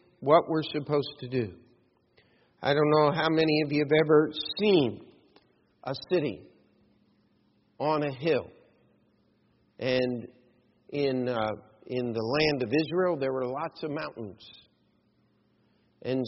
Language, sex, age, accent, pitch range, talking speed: English, male, 50-69, American, 130-165 Hz, 125 wpm